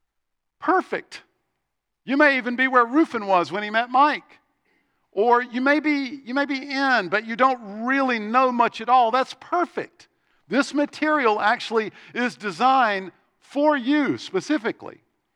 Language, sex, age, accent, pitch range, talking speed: English, male, 50-69, American, 180-250 Hz, 140 wpm